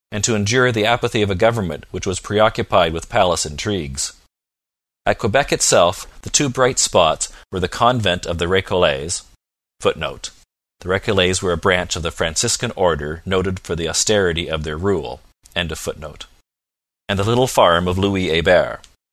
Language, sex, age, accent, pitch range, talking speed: English, male, 40-59, American, 80-110 Hz, 165 wpm